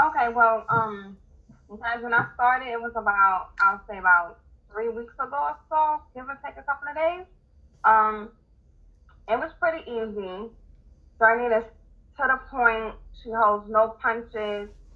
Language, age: English, 20-39